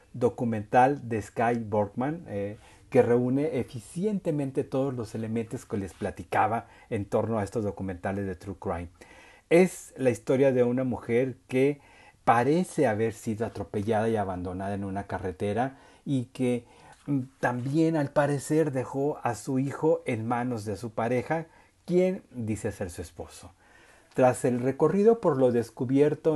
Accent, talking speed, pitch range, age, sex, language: Mexican, 145 wpm, 110-135 Hz, 40-59, male, Spanish